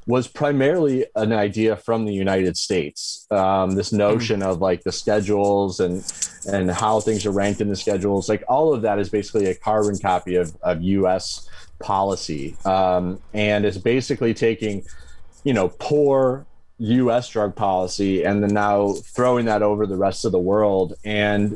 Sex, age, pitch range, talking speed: male, 30-49, 100-120 Hz, 165 wpm